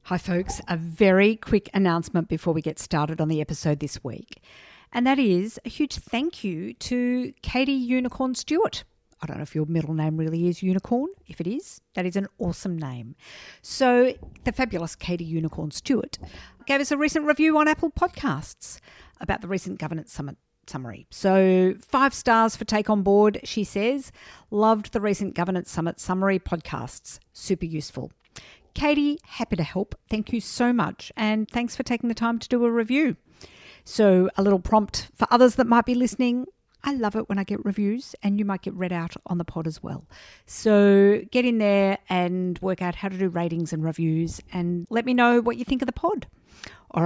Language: English